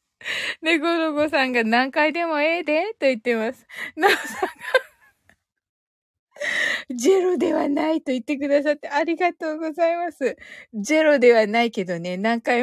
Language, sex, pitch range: Japanese, female, 245-380 Hz